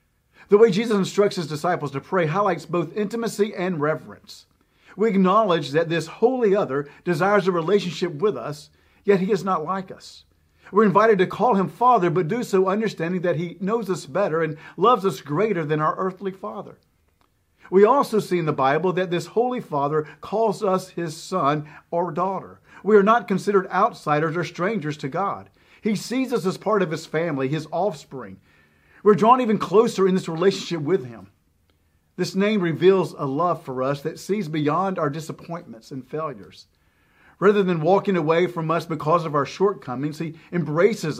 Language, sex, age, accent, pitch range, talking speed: English, male, 50-69, American, 145-200 Hz, 180 wpm